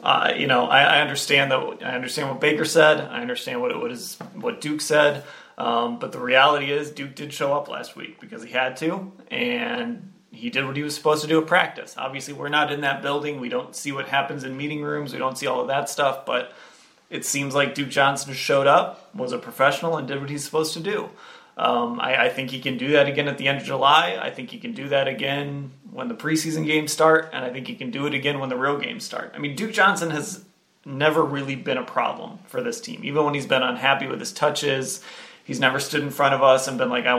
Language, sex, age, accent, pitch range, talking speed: English, male, 30-49, American, 135-170 Hz, 250 wpm